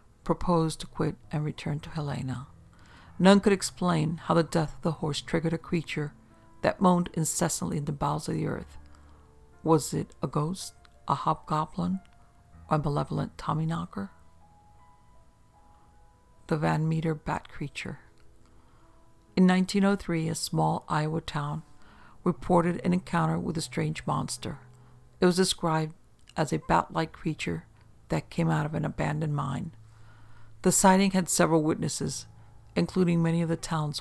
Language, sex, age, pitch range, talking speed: English, female, 60-79, 115-170 Hz, 145 wpm